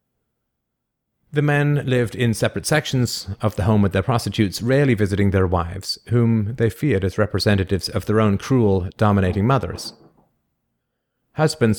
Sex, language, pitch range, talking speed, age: male, English, 95-115 Hz, 145 wpm, 30-49